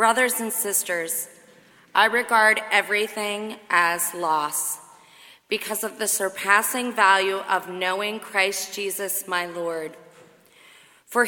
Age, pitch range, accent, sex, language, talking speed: 30-49, 185-220 Hz, American, female, English, 105 wpm